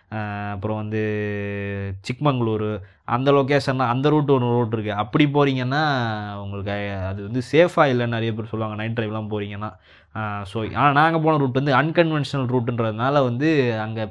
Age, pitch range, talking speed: 20-39, 110-145 Hz, 140 wpm